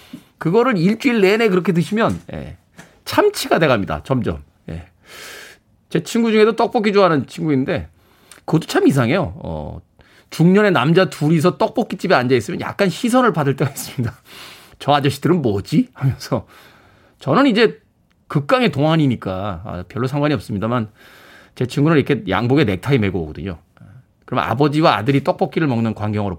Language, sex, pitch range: Korean, male, 125-185 Hz